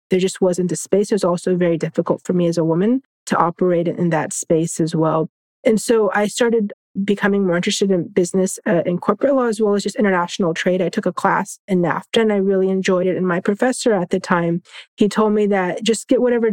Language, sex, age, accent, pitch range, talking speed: English, female, 30-49, American, 175-210 Hz, 235 wpm